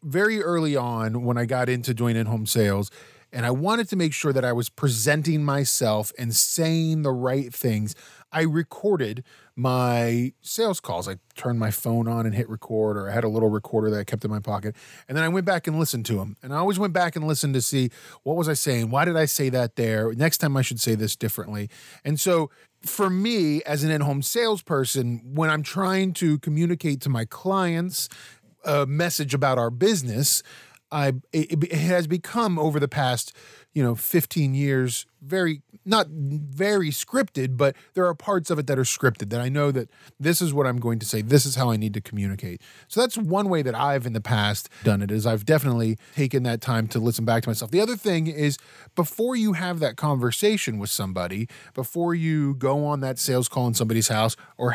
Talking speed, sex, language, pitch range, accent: 215 wpm, male, English, 115-160 Hz, American